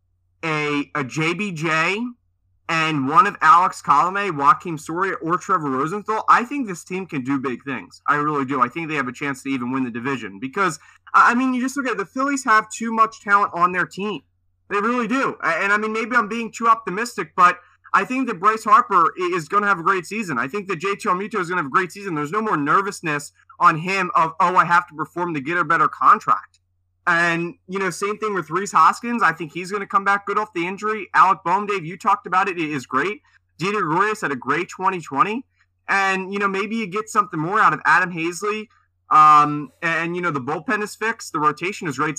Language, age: English, 20-39